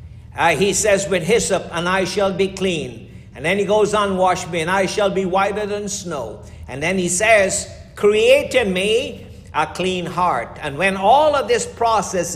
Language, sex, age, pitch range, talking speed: English, male, 60-79, 160-210 Hz, 195 wpm